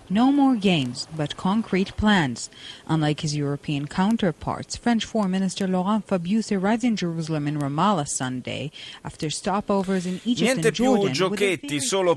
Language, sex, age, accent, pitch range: Italian, male, 30-49, native, 115-165 Hz